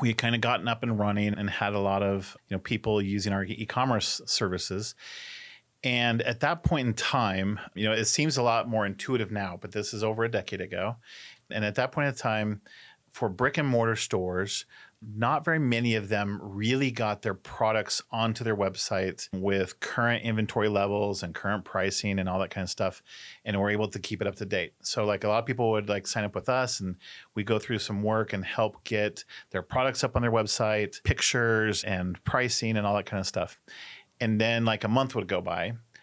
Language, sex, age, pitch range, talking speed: English, male, 40-59, 100-115 Hz, 220 wpm